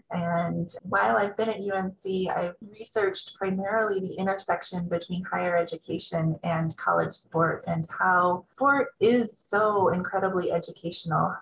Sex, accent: female, American